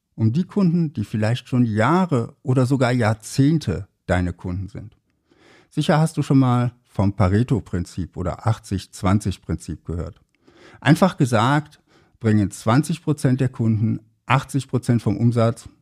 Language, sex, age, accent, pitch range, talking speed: German, male, 60-79, German, 100-140 Hz, 120 wpm